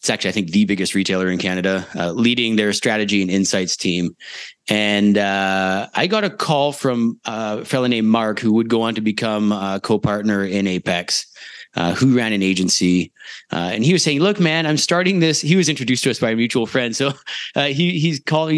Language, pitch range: English, 100-140 Hz